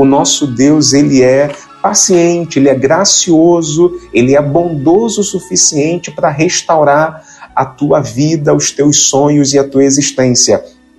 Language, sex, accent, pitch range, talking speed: Portuguese, male, Brazilian, 140-175 Hz, 140 wpm